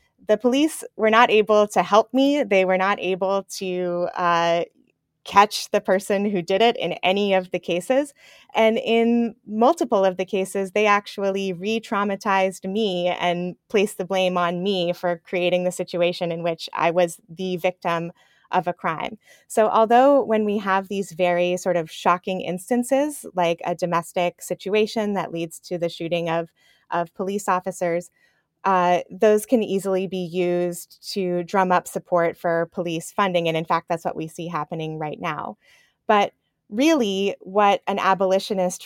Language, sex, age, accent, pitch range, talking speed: English, female, 20-39, American, 175-205 Hz, 165 wpm